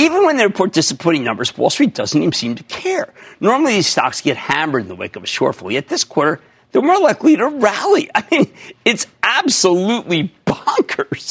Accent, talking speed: American, 195 wpm